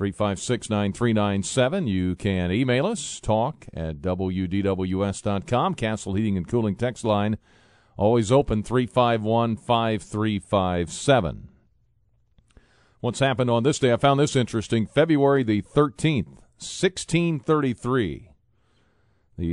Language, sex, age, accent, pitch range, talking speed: English, male, 40-59, American, 100-120 Hz, 130 wpm